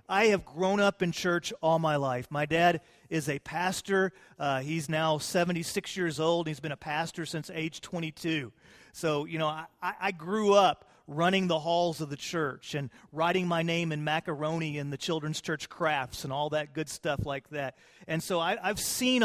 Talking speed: 195 wpm